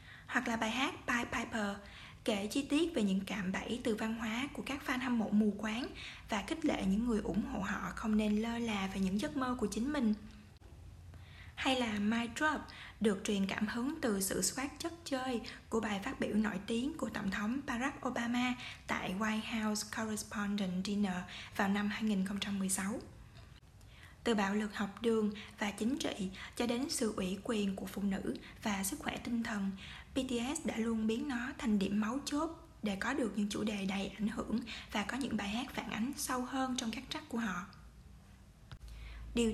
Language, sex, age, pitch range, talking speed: Vietnamese, female, 20-39, 205-255 Hz, 195 wpm